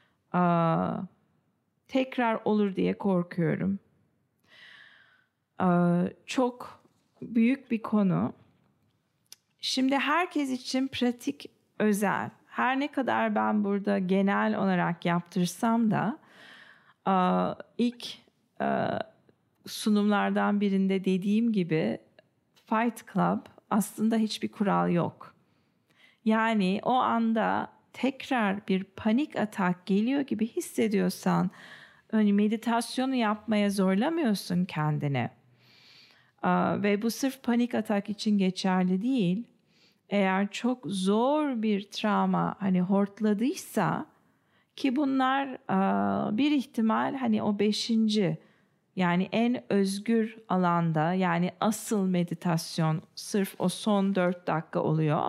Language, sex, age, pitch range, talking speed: English, female, 40-59, 185-230 Hz, 90 wpm